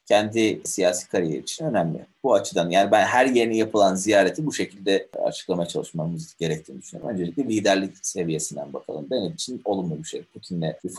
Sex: male